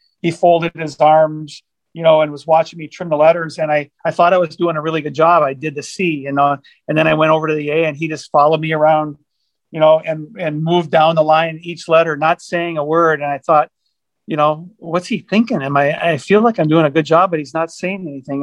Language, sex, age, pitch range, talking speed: English, male, 40-59, 145-170 Hz, 265 wpm